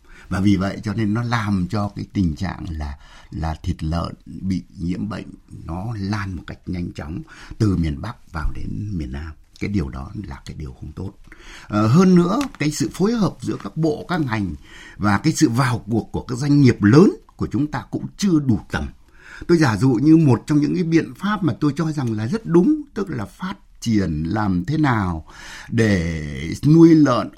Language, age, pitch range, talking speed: Vietnamese, 60-79, 85-135 Hz, 210 wpm